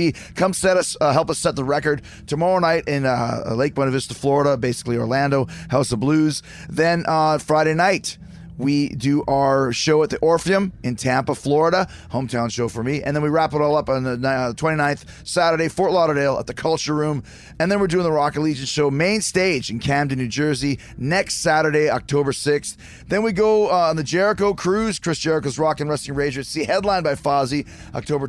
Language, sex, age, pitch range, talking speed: English, male, 30-49, 135-170 Hz, 195 wpm